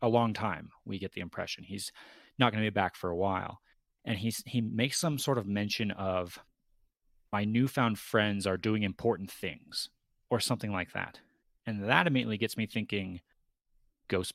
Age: 30-49